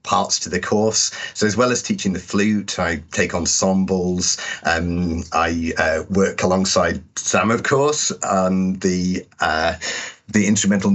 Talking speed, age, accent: 145 wpm, 40-59, British